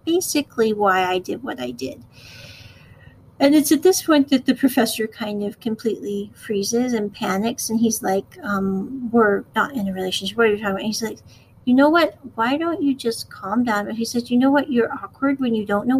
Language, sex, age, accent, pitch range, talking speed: English, female, 40-59, American, 215-270 Hz, 220 wpm